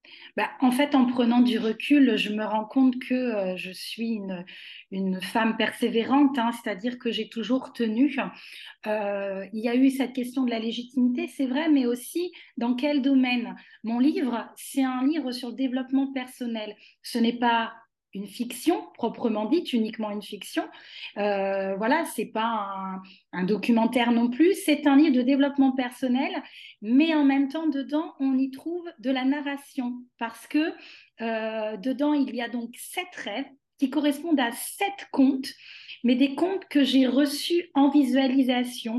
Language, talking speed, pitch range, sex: French, 170 wpm, 230-280 Hz, female